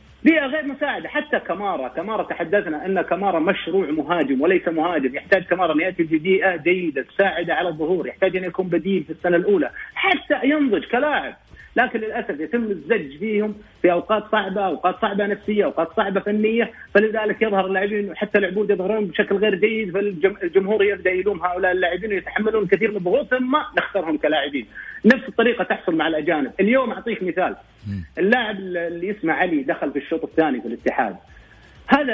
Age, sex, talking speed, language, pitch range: 40-59, male, 155 wpm, English, 175-225 Hz